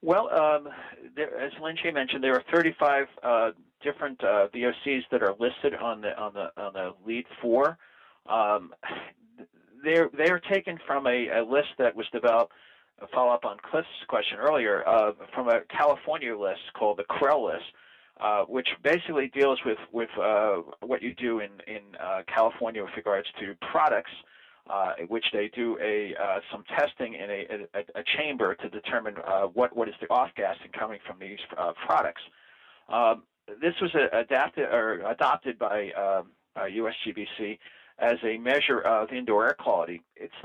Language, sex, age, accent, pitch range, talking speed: English, male, 40-59, American, 90-140 Hz, 170 wpm